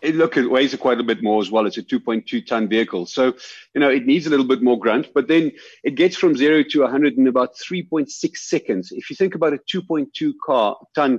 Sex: male